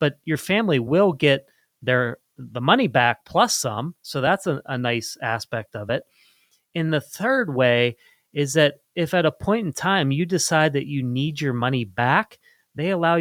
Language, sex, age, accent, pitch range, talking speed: English, male, 30-49, American, 120-155 Hz, 185 wpm